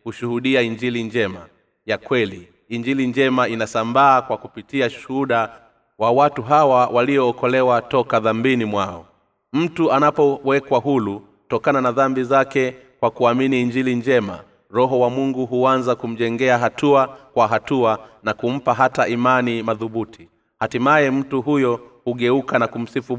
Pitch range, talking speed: 115-135 Hz, 125 wpm